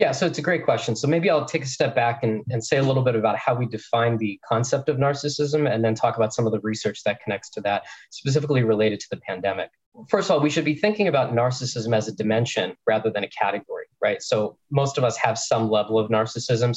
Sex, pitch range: male, 110-145 Hz